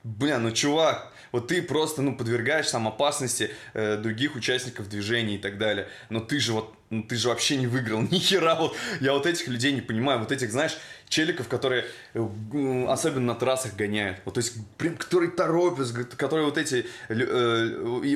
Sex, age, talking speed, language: male, 20-39, 190 wpm, Russian